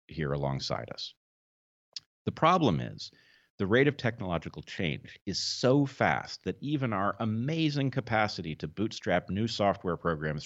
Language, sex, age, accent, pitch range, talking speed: English, male, 40-59, American, 80-105 Hz, 140 wpm